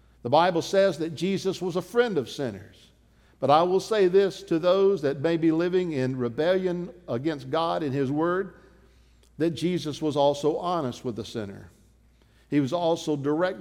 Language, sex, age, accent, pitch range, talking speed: English, male, 50-69, American, 115-165 Hz, 175 wpm